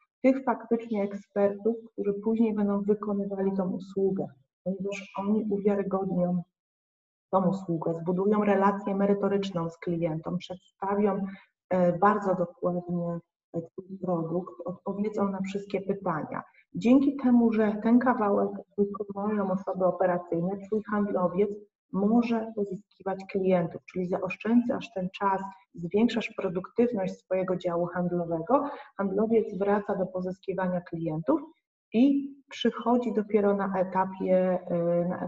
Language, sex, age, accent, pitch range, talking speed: Polish, female, 30-49, native, 185-210 Hz, 105 wpm